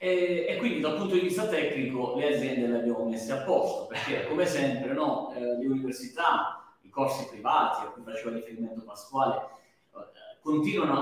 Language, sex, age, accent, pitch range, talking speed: Italian, male, 30-49, native, 120-160 Hz, 170 wpm